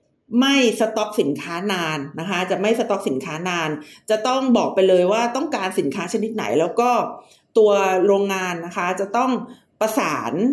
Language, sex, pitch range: Thai, female, 180-245 Hz